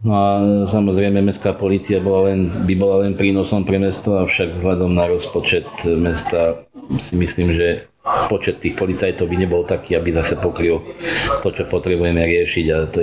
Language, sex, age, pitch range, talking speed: Slovak, male, 40-59, 85-100 Hz, 170 wpm